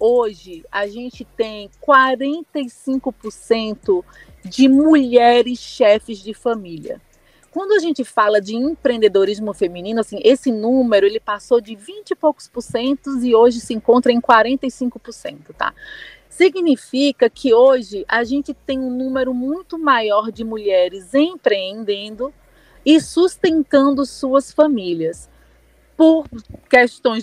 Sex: female